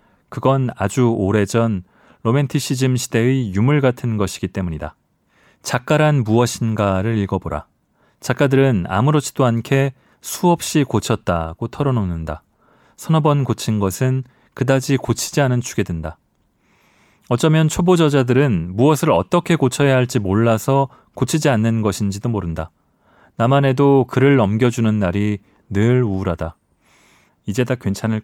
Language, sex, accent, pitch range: Korean, male, native, 100-135 Hz